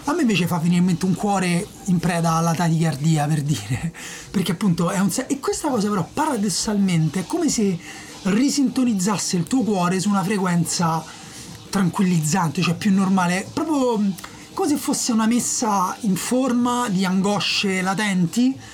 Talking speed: 155 wpm